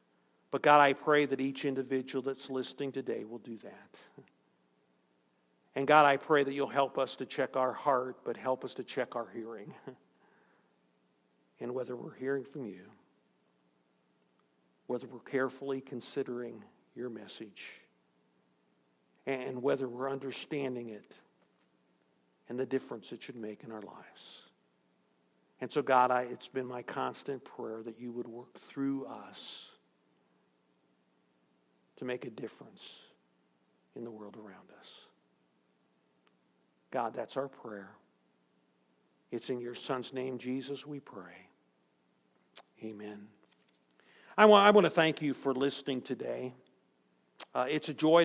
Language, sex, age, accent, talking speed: English, male, 50-69, American, 135 wpm